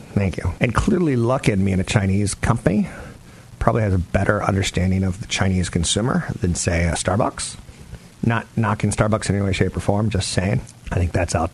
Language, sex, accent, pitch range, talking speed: English, male, American, 90-120 Hz, 200 wpm